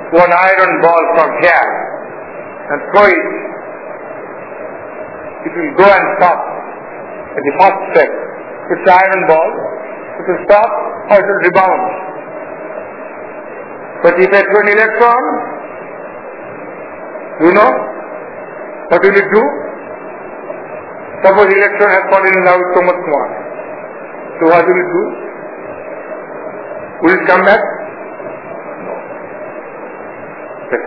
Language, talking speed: English, 115 wpm